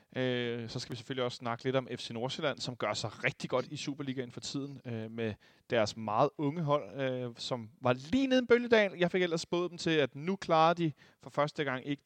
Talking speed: 225 wpm